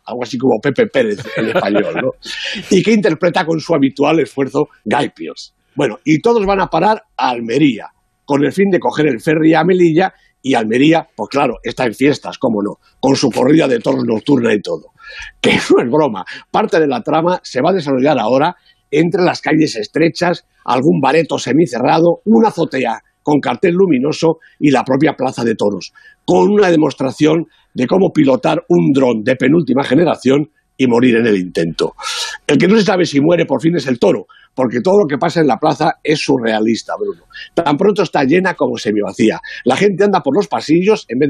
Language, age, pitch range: Spanish, 60-79, 130-175 Hz